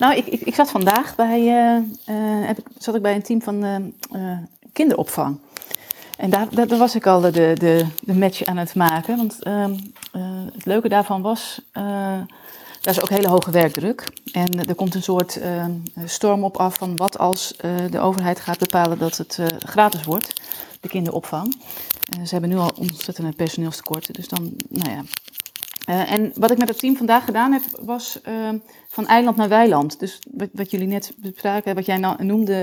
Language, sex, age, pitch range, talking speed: Dutch, female, 30-49, 180-215 Hz, 195 wpm